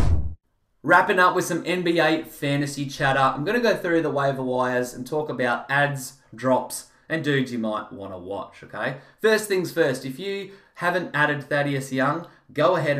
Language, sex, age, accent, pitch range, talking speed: English, male, 20-39, Australian, 115-150 Hz, 180 wpm